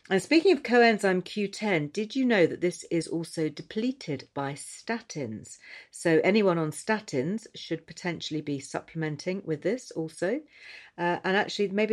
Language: English